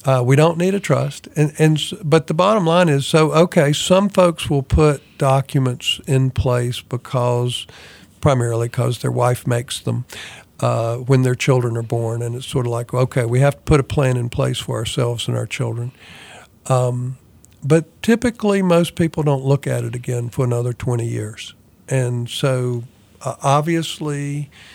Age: 50-69